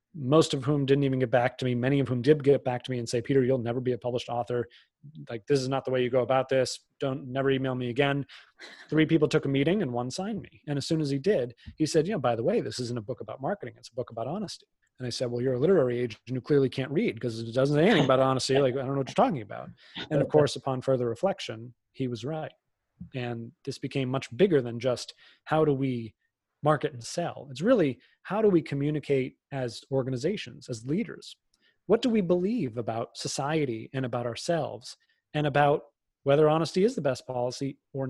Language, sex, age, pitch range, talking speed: English, male, 30-49, 125-155 Hz, 240 wpm